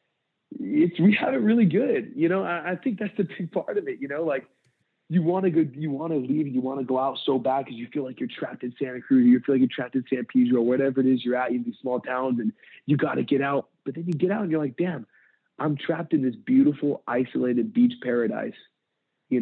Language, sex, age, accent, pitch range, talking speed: English, male, 20-39, American, 130-195 Hz, 270 wpm